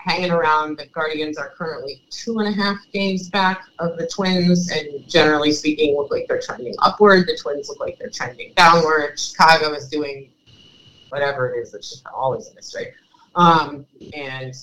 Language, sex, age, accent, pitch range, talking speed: English, female, 30-49, American, 150-215 Hz, 175 wpm